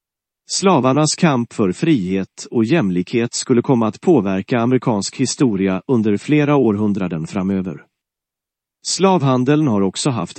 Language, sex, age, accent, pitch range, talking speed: English, male, 40-59, Swedish, 100-135 Hz, 115 wpm